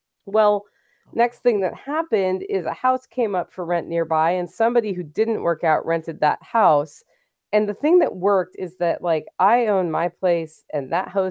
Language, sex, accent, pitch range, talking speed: English, female, American, 160-205 Hz, 190 wpm